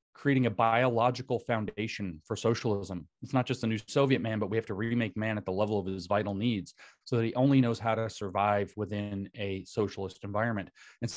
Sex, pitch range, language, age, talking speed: male, 95-120 Hz, English, 30-49, 210 wpm